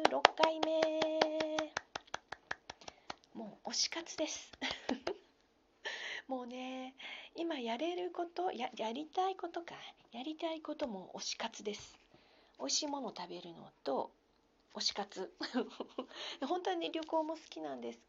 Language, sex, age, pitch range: Japanese, female, 40-59, 210-310 Hz